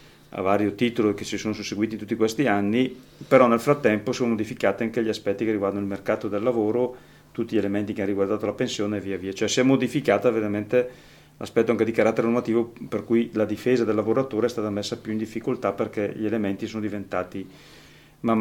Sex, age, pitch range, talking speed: male, 40-59, 100-115 Hz, 205 wpm